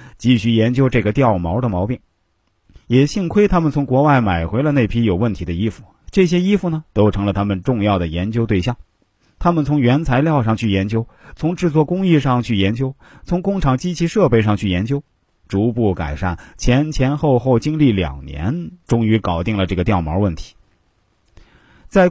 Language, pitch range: Chinese, 100-140 Hz